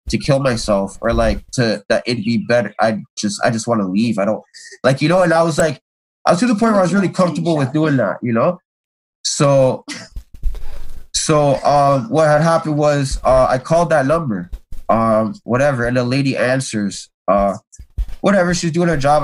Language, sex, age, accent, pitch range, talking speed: English, male, 20-39, American, 115-155 Hz, 205 wpm